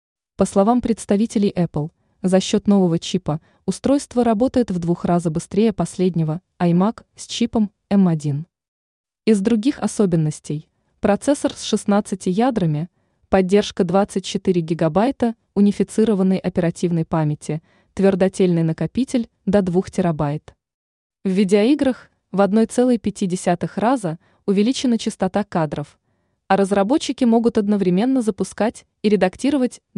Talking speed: 105 wpm